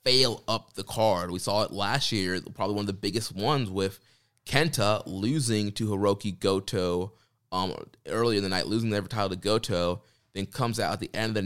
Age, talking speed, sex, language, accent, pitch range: 20-39, 210 wpm, male, English, American, 95-110 Hz